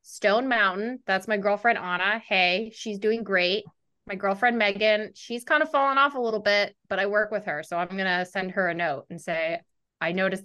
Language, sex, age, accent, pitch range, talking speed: English, female, 20-39, American, 200-260 Hz, 220 wpm